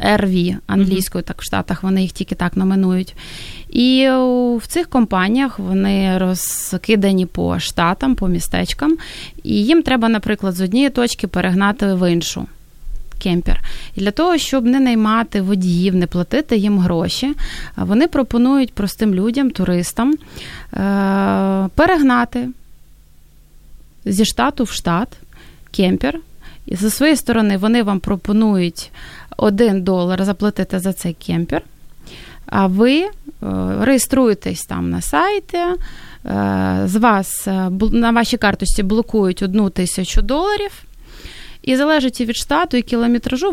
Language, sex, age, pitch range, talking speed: Ukrainian, female, 20-39, 190-255 Hz, 120 wpm